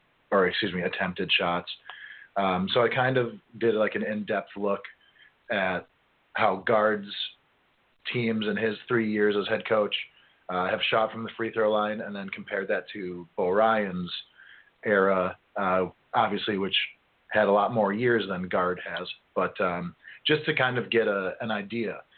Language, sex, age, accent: English, male, 40-59, American